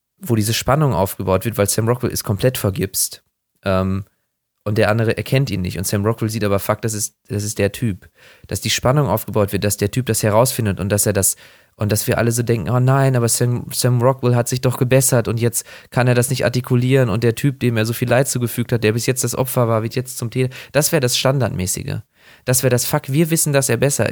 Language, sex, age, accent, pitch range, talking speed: English, male, 20-39, German, 105-125 Hz, 250 wpm